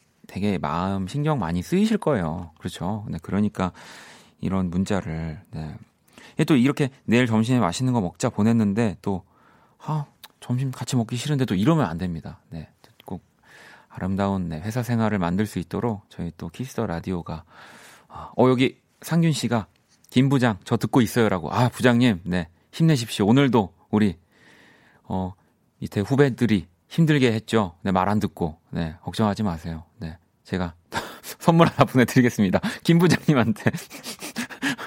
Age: 30-49